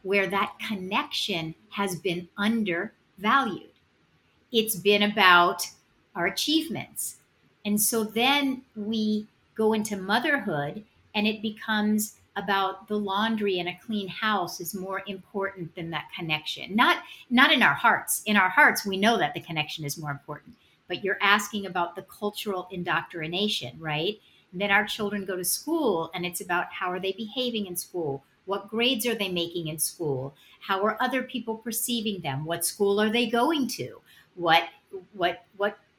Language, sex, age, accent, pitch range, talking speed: English, female, 50-69, American, 180-235 Hz, 160 wpm